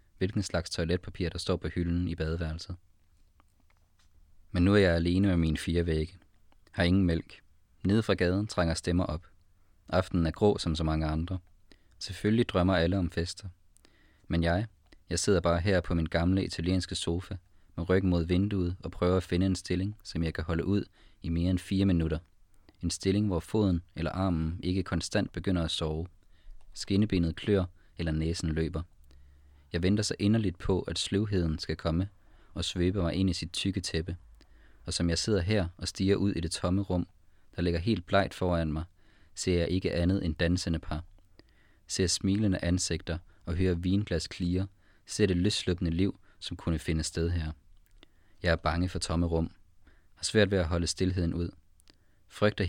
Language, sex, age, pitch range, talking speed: Danish, male, 20-39, 85-95 Hz, 180 wpm